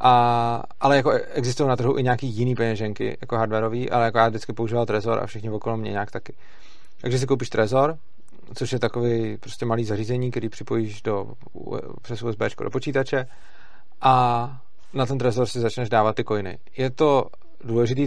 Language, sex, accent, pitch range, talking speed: Czech, male, native, 115-135 Hz, 175 wpm